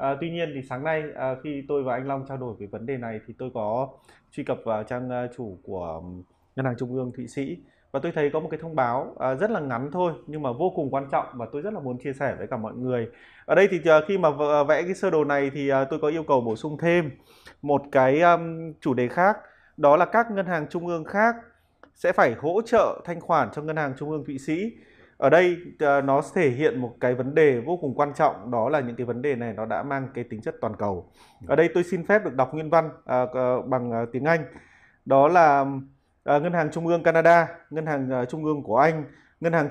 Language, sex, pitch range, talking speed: Vietnamese, male, 125-165 Hz, 240 wpm